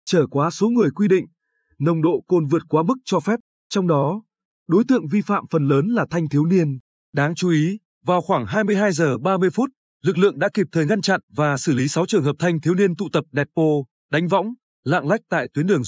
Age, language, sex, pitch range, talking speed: 20-39, Vietnamese, male, 145-195 Hz, 235 wpm